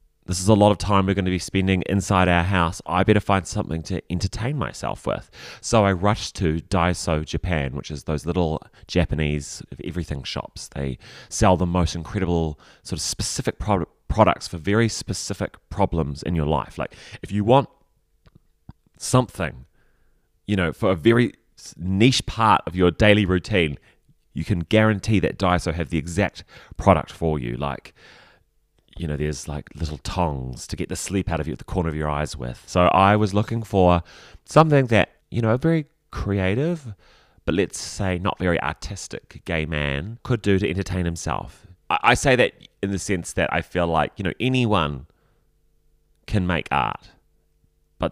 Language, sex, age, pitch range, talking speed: English, male, 30-49, 80-105 Hz, 175 wpm